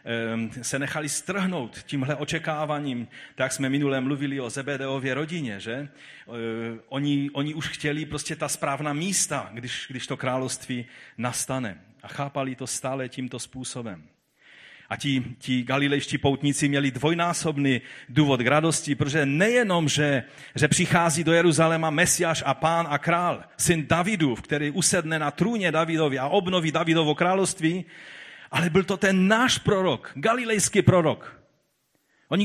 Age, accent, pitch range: 40-59, native, 130-170 Hz